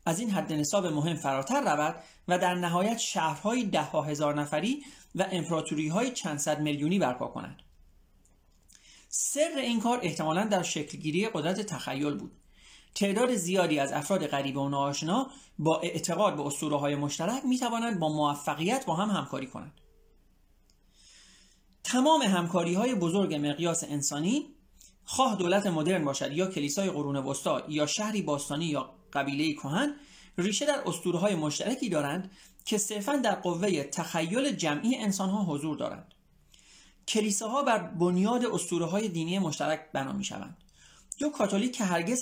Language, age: Persian, 40-59